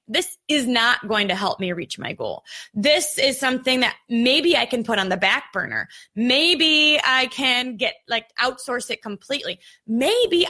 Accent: American